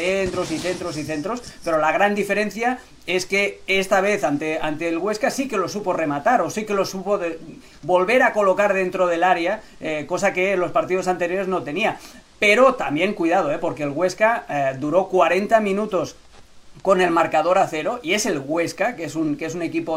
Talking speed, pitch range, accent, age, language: 210 wpm, 160-195 Hz, Spanish, 40-59, Spanish